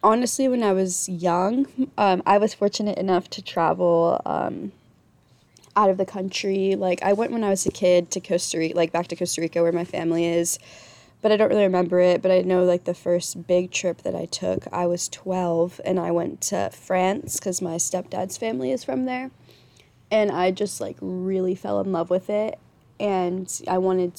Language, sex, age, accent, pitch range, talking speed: English, female, 20-39, American, 175-200 Hz, 205 wpm